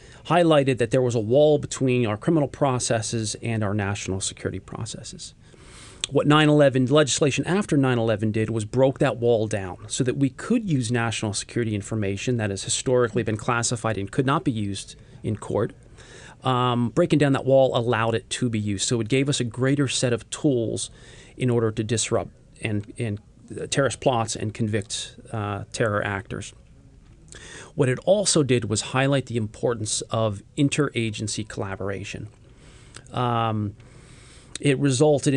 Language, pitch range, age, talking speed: English, 110-135 Hz, 40-59, 155 wpm